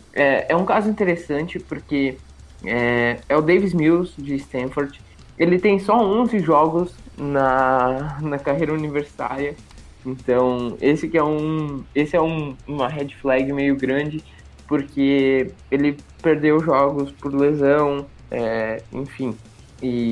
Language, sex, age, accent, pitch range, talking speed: Portuguese, male, 20-39, Brazilian, 130-165 Hz, 115 wpm